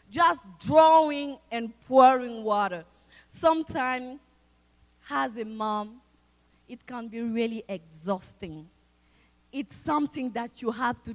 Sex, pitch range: female, 215-355 Hz